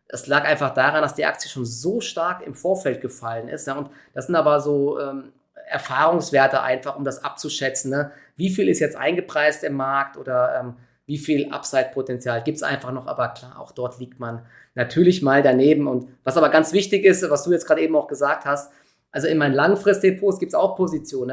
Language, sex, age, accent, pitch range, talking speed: German, male, 20-39, German, 130-155 Hz, 210 wpm